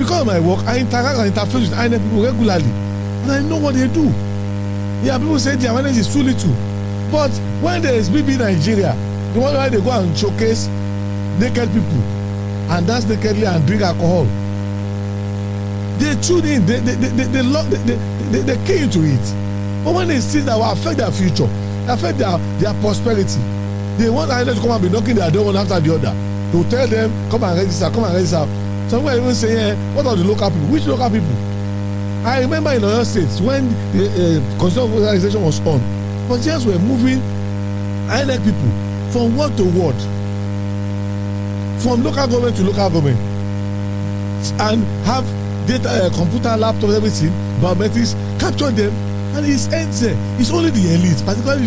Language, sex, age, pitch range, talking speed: English, male, 50-69, 100-110 Hz, 180 wpm